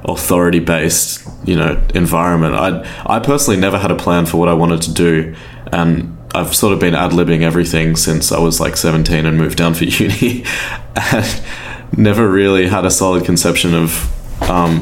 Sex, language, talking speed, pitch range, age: male, English, 180 wpm, 80-95 Hz, 20-39